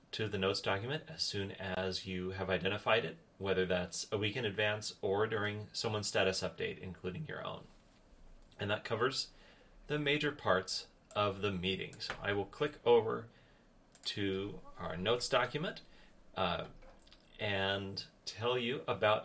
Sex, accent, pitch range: male, American, 100-125 Hz